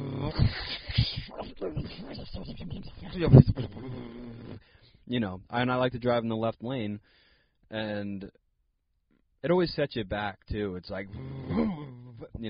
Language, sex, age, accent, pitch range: English, male, 20-39, American, 95-115 Hz